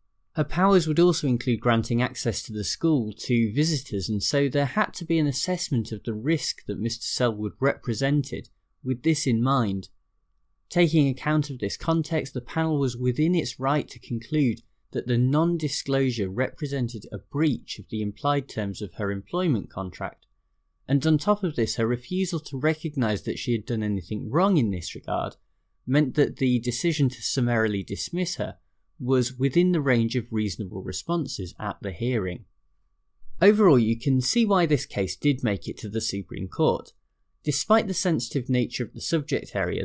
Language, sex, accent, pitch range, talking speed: English, male, British, 105-150 Hz, 175 wpm